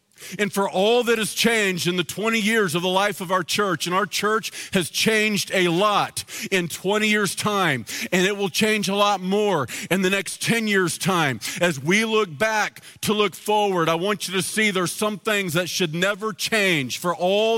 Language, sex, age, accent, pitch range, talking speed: English, male, 40-59, American, 160-210 Hz, 210 wpm